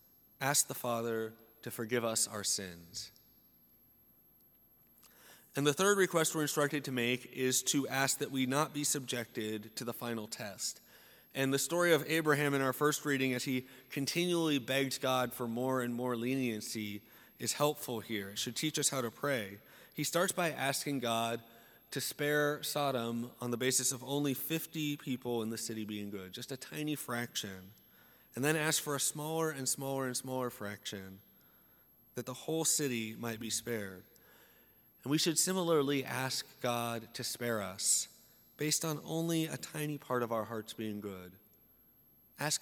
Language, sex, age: English, male, 30-49